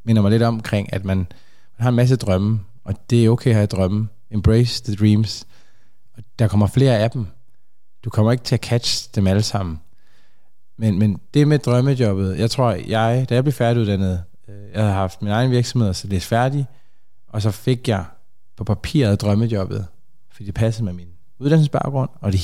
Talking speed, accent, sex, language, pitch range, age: 195 wpm, native, male, Danish, 105-125 Hz, 20-39